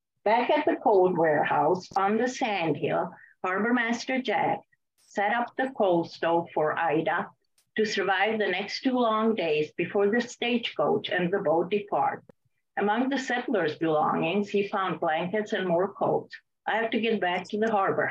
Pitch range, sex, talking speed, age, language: 170-215 Hz, female, 160 wpm, 50-69, English